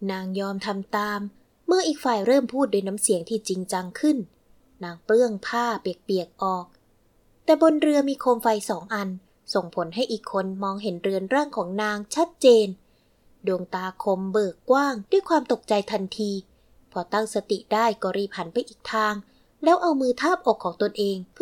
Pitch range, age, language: 190-265 Hz, 20-39, Thai